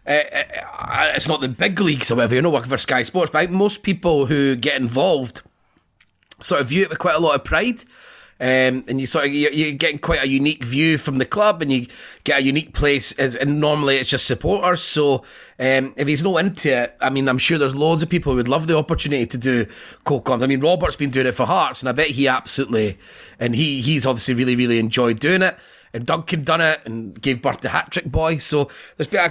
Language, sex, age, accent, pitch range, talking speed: English, male, 30-49, British, 130-160 Hz, 240 wpm